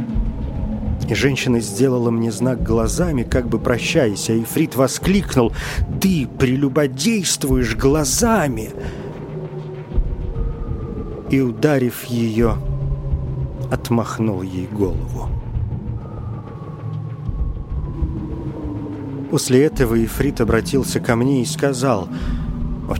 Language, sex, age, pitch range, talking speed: Russian, male, 40-59, 105-135 Hz, 80 wpm